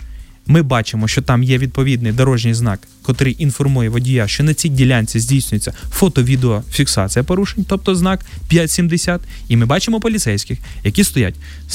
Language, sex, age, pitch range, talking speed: Ukrainian, male, 20-39, 120-155 Hz, 150 wpm